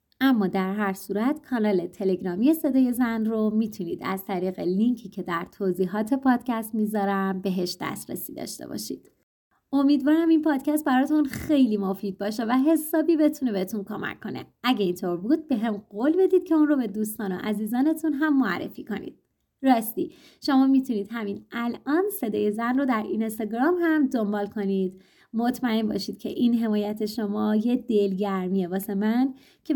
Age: 30-49